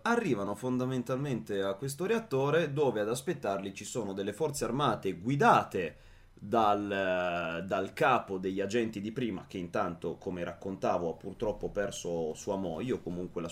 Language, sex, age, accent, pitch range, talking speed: Italian, male, 30-49, native, 95-120 Hz, 145 wpm